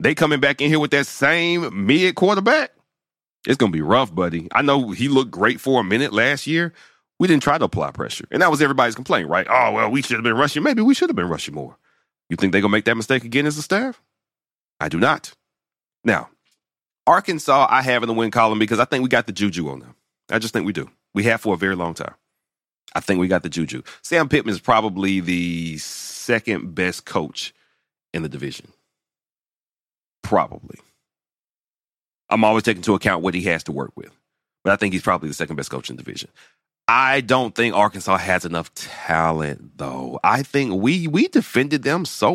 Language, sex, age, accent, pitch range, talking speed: English, male, 30-49, American, 95-145 Hz, 215 wpm